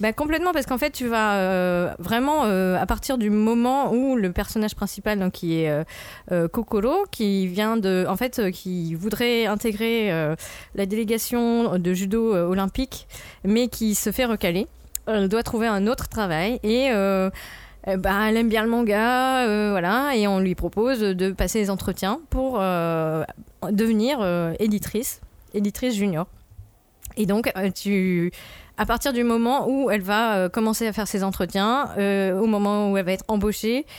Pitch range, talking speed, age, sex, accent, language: 190-230 Hz, 175 wpm, 20-39, female, French, French